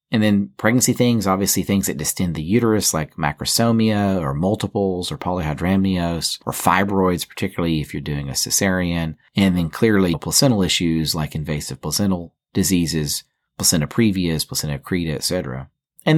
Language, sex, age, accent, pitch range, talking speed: English, male, 40-59, American, 85-115 Hz, 145 wpm